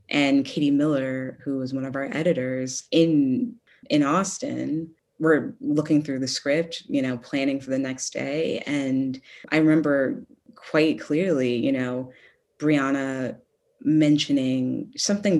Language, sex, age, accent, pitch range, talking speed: English, female, 20-39, American, 135-175 Hz, 135 wpm